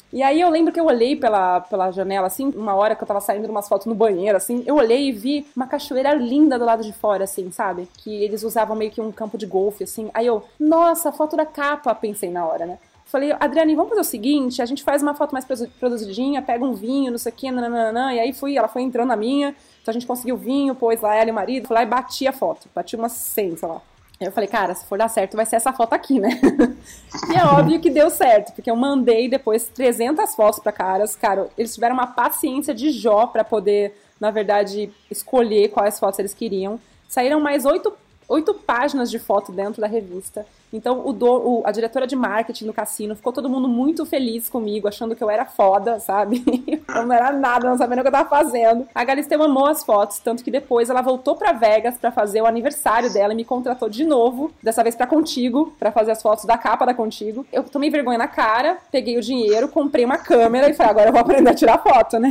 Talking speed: 235 wpm